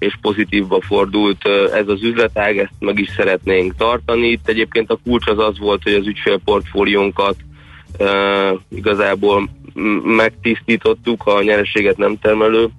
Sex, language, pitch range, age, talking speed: male, Hungarian, 100-115 Hz, 20-39, 135 wpm